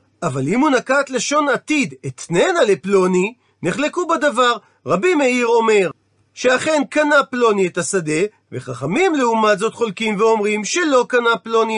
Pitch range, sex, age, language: 195-280 Hz, male, 40-59, Hebrew